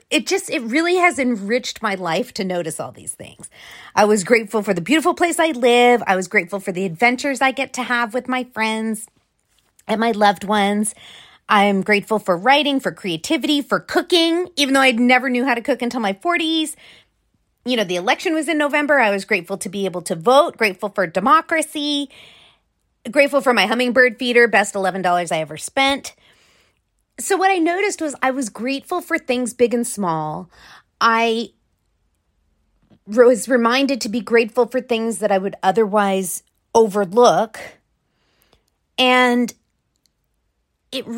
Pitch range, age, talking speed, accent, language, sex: 200-275 Hz, 30-49, 165 wpm, American, English, female